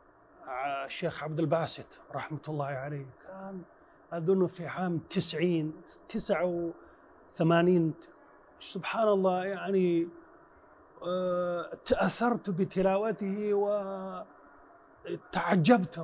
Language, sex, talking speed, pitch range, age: Arabic, male, 70 wpm, 165-220 Hz, 30-49